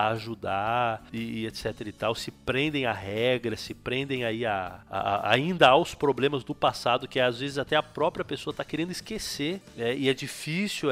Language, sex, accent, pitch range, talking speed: Portuguese, male, Brazilian, 125-180 Hz, 200 wpm